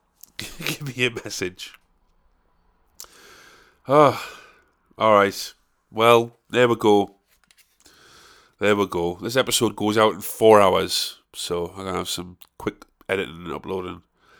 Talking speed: 135 wpm